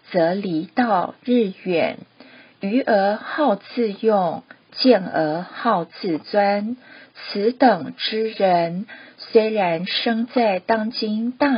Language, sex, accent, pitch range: Chinese, female, native, 190-250 Hz